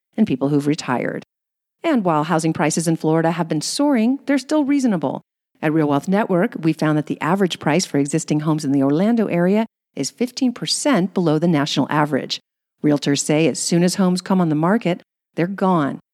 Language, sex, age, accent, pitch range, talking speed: English, female, 50-69, American, 150-205 Hz, 190 wpm